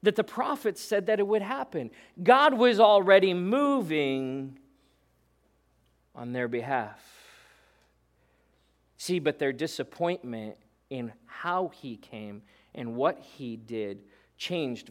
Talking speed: 115 wpm